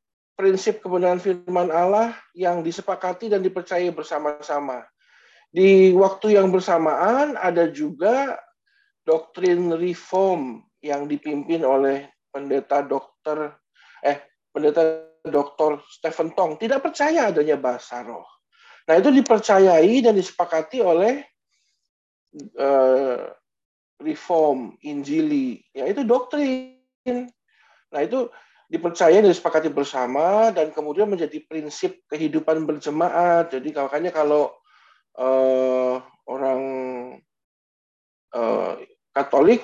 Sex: male